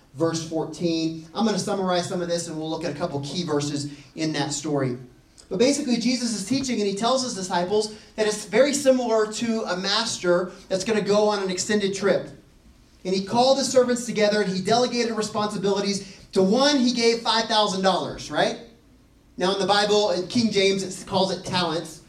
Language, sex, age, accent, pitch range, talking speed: English, male, 30-49, American, 175-225 Hz, 195 wpm